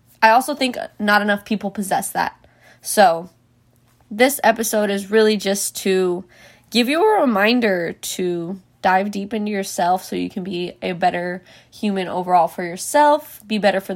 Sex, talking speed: female, 160 wpm